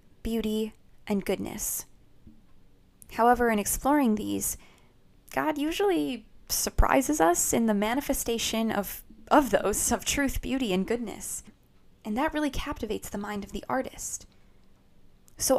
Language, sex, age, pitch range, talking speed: English, female, 10-29, 210-250 Hz, 125 wpm